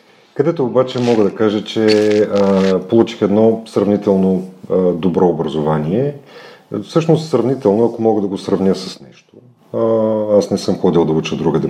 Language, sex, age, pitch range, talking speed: Bulgarian, male, 40-59, 95-125 Hz, 155 wpm